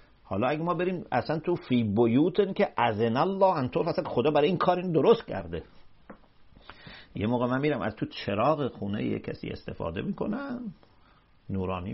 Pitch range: 95-145 Hz